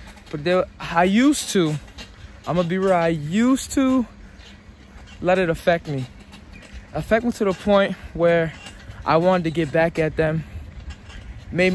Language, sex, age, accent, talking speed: English, male, 20-39, American, 160 wpm